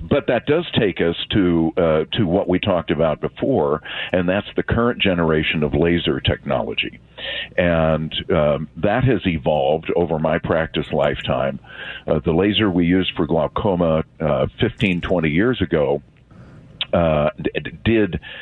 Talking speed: 145 wpm